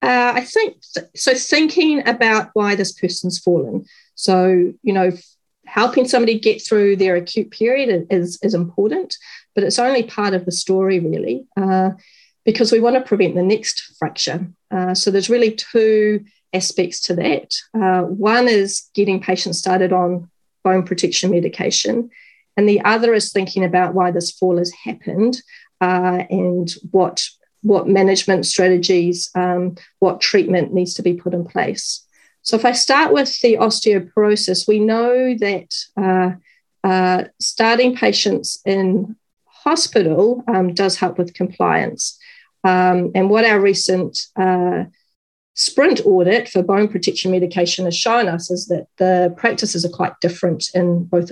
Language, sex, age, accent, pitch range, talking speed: English, female, 40-59, Australian, 180-225 Hz, 150 wpm